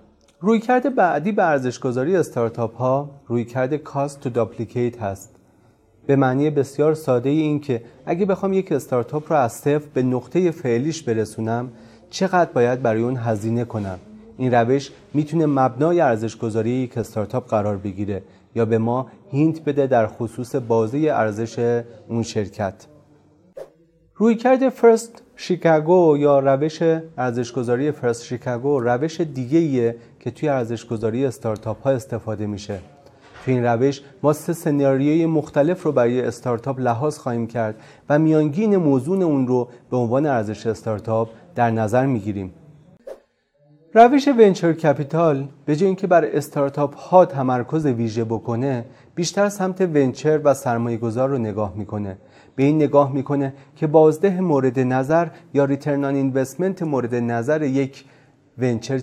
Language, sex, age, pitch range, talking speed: Persian, male, 30-49, 115-155 Hz, 130 wpm